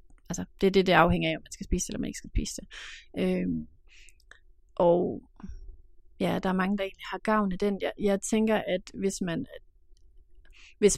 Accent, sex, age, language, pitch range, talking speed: native, female, 30-49, Danish, 165-195 Hz, 195 wpm